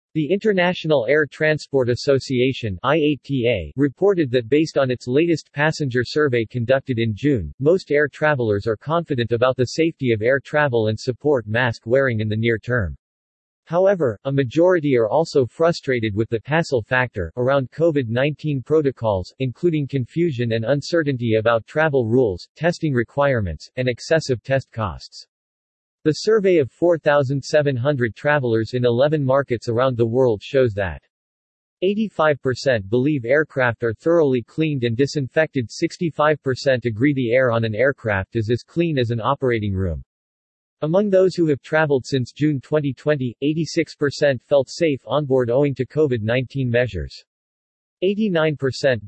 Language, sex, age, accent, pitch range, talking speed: English, male, 40-59, American, 120-150 Hz, 140 wpm